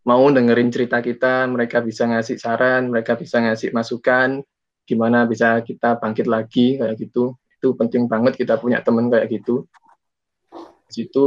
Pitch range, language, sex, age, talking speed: 115-125 Hz, Indonesian, male, 20-39, 150 wpm